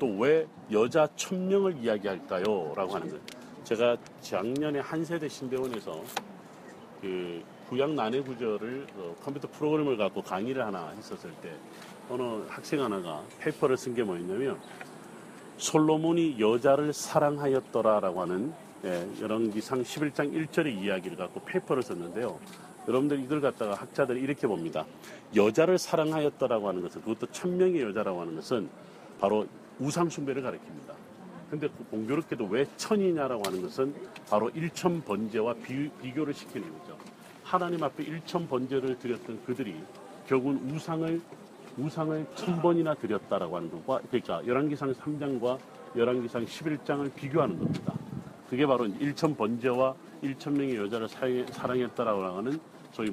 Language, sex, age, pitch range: Korean, male, 40-59, 130-160 Hz